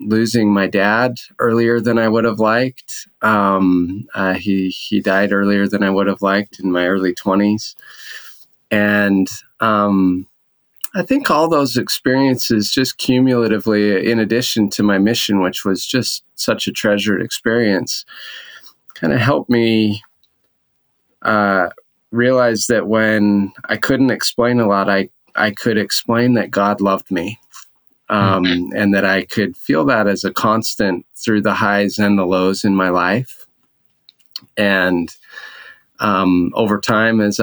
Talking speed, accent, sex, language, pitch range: 145 wpm, American, male, English, 100-115 Hz